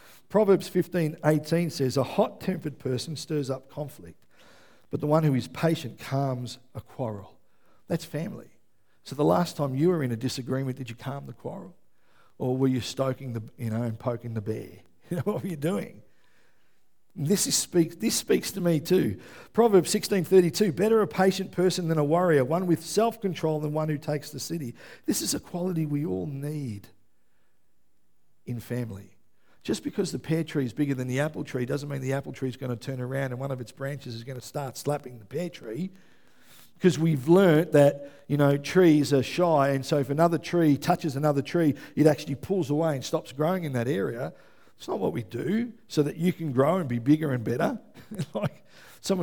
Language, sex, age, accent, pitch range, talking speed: English, male, 50-69, Australian, 130-170 Hz, 200 wpm